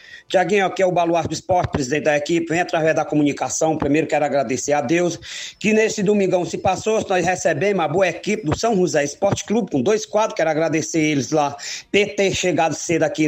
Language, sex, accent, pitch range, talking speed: Portuguese, male, Brazilian, 165-225 Hz, 210 wpm